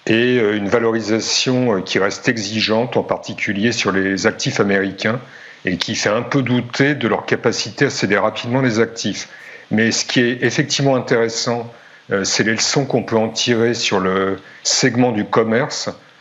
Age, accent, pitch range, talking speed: 50-69, French, 105-130 Hz, 165 wpm